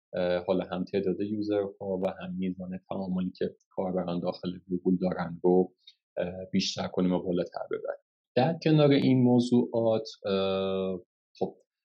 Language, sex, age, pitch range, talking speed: Persian, male, 30-49, 90-100 Hz, 120 wpm